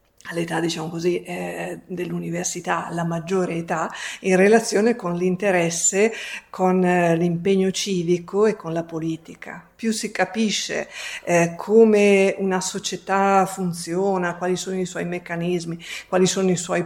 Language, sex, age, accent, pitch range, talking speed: Italian, female, 50-69, native, 170-195 Hz, 130 wpm